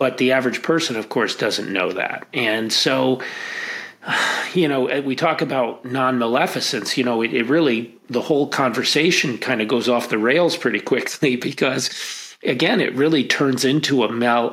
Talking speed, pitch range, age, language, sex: 170 wpm, 115-135 Hz, 40-59, English, male